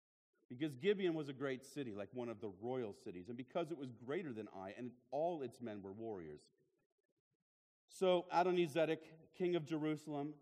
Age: 40-59